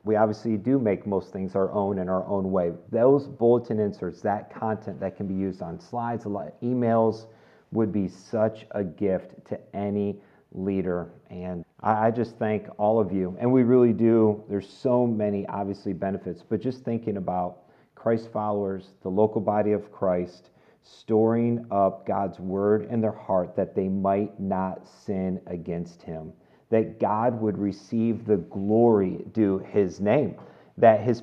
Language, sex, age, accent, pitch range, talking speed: English, male, 40-59, American, 100-120 Hz, 160 wpm